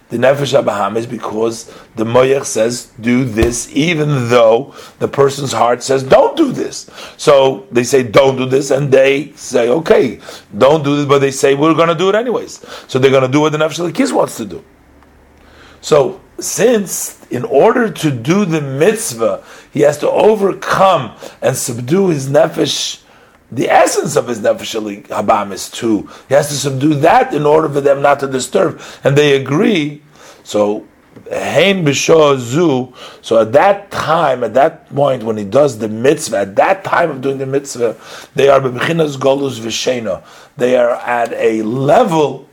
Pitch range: 120-145 Hz